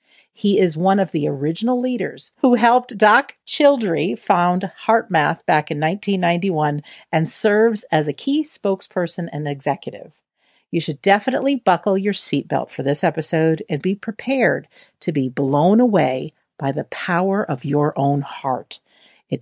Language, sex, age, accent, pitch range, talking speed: English, female, 50-69, American, 150-215 Hz, 150 wpm